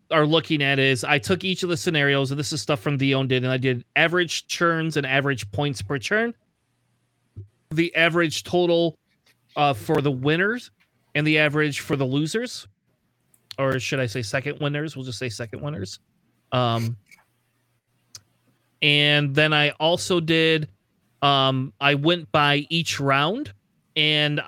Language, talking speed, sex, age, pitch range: English, 155 wpm, male, 30-49, 135-170 Hz